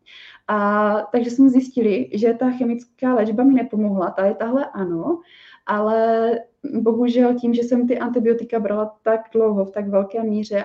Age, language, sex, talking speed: 20-39, Czech, female, 160 wpm